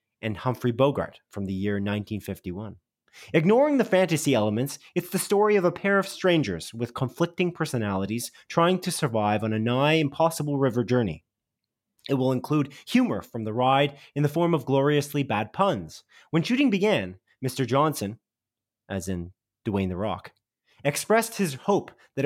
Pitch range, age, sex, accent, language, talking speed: 115-160 Hz, 30-49, male, American, English, 155 wpm